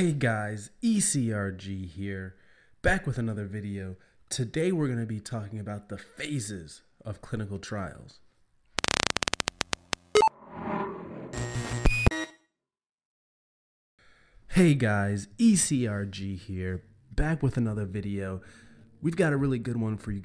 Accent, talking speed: American, 105 wpm